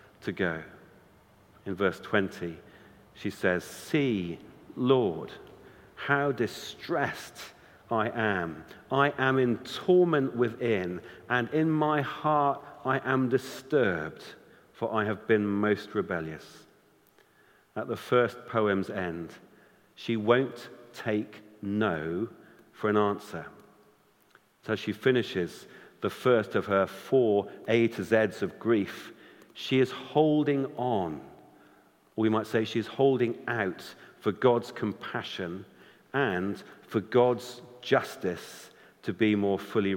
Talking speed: 115 wpm